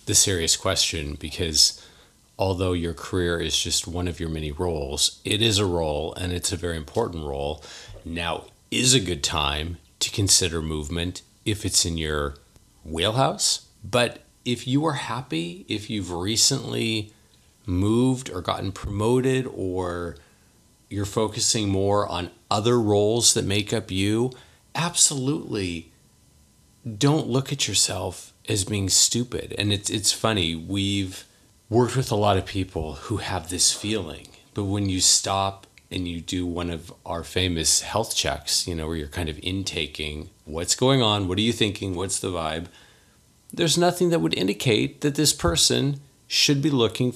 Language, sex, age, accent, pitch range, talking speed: English, male, 30-49, American, 85-110 Hz, 160 wpm